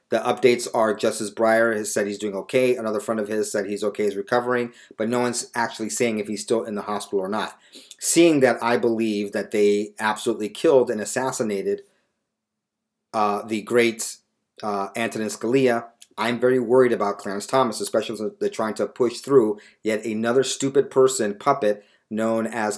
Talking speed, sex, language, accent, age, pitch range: 180 wpm, male, English, American, 40-59, 105-125 Hz